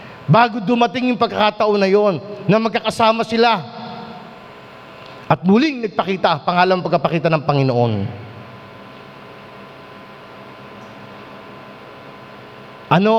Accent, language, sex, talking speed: native, Filipino, male, 75 wpm